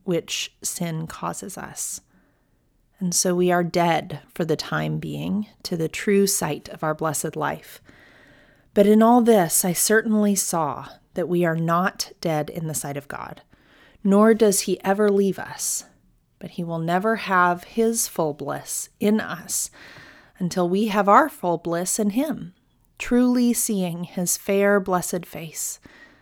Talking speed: 155 wpm